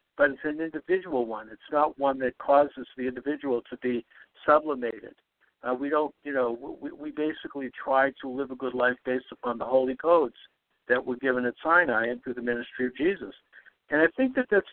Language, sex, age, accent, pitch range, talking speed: English, male, 60-79, American, 130-155 Hz, 205 wpm